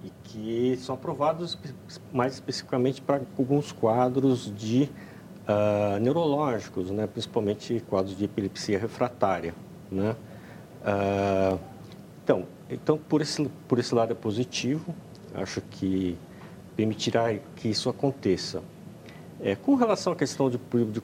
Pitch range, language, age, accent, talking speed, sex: 100-135 Hz, Portuguese, 50-69, Brazilian, 120 wpm, male